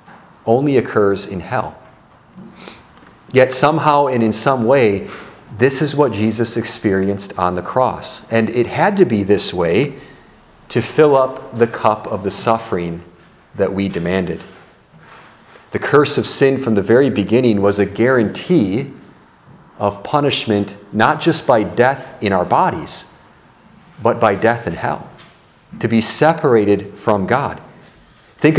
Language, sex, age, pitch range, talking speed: English, male, 40-59, 100-135 Hz, 140 wpm